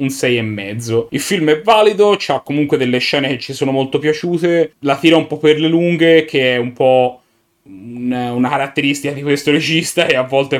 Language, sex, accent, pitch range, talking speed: Italian, male, native, 120-145 Hz, 205 wpm